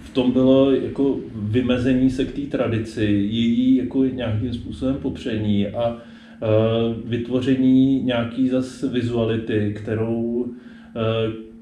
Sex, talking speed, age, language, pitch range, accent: male, 115 wpm, 30-49, Czech, 110-120 Hz, native